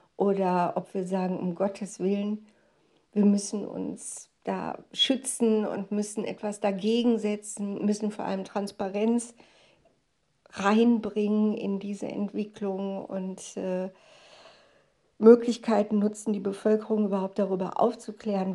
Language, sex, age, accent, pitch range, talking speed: German, female, 60-79, German, 195-220 Hz, 110 wpm